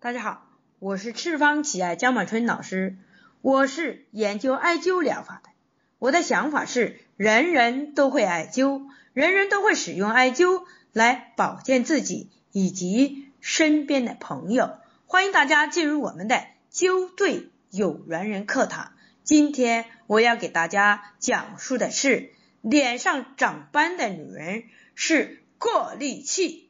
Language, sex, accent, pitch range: Chinese, female, native, 210-300 Hz